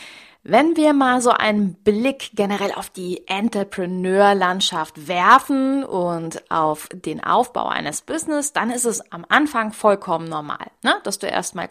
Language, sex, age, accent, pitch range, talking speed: German, female, 30-49, German, 170-240 Hz, 145 wpm